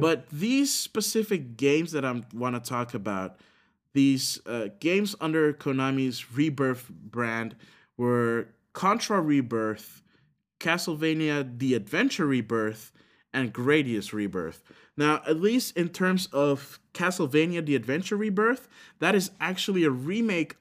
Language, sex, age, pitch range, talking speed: English, male, 20-39, 120-170 Hz, 120 wpm